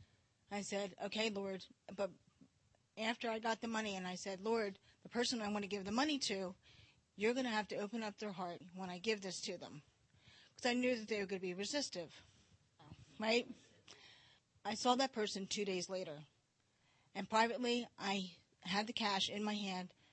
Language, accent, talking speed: English, American, 195 wpm